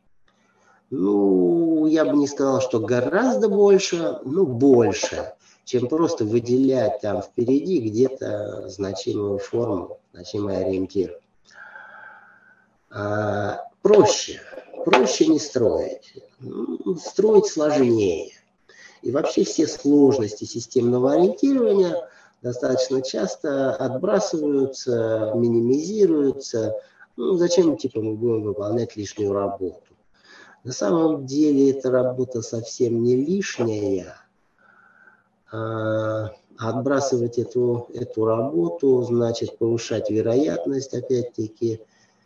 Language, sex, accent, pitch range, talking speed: Russian, male, native, 110-145 Hz, 90 wpm